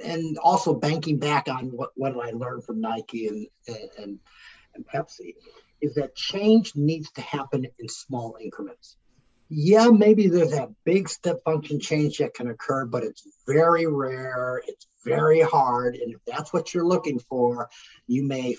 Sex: male